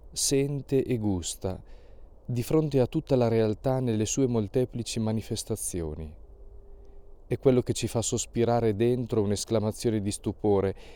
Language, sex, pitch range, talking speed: Italian, male, 85-120 Hz, 125 wpm